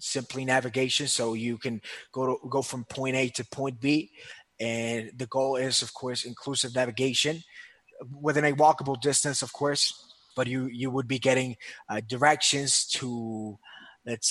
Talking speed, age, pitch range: 160 wpm, 20-39, 120-140 Hz